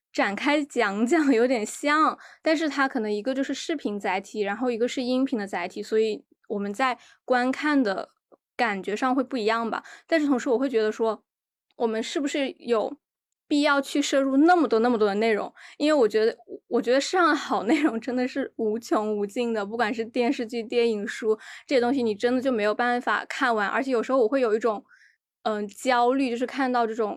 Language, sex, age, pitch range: Chinese, female, 10-29, 220-265 Hz